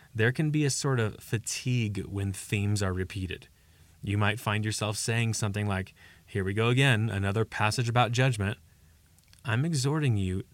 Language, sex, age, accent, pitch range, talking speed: English, male, 30-49, American, 95-130 Hz, 165 wpm